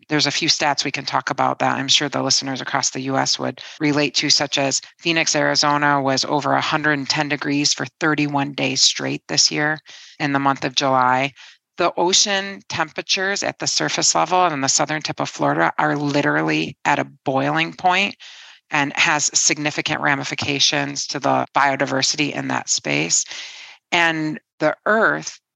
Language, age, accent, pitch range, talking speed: English, 40-59, American, 140-165 Hz, 165 wpm